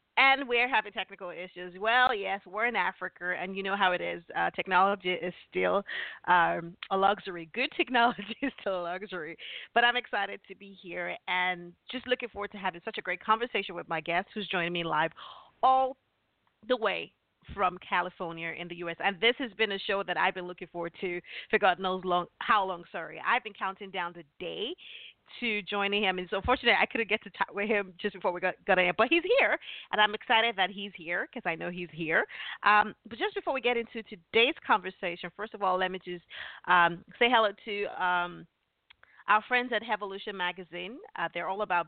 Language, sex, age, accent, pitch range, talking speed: English, female, 30-49, American, 175-215 Hz, 210 wpm